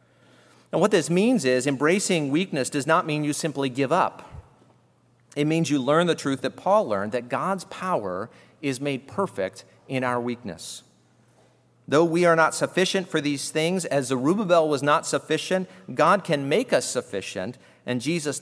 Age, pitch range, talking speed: 40-59, 125-170 Hz, 170 wpm